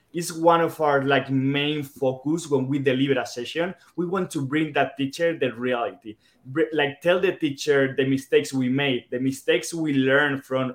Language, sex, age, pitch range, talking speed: English, male, 20-39, 125-145 Hz, 185 wpm